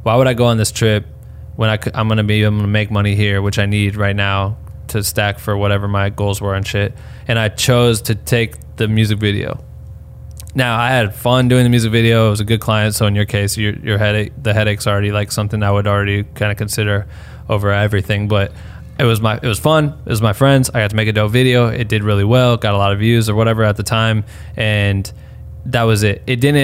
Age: 20-39